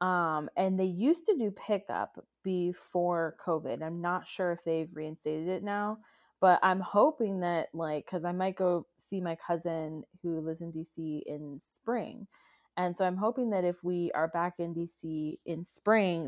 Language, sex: English, female